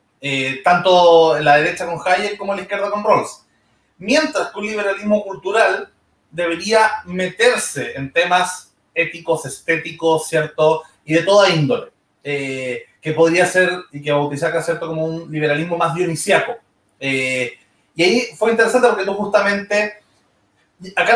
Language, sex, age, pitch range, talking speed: Spanish, male, 30-49, 155-210 Hz, 145 wpm